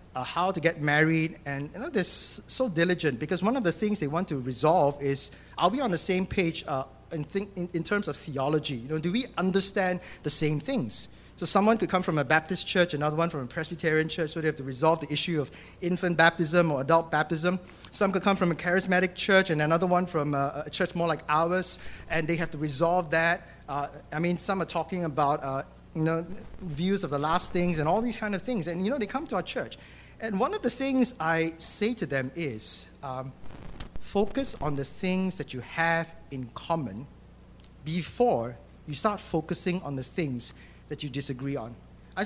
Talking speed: 215 wpm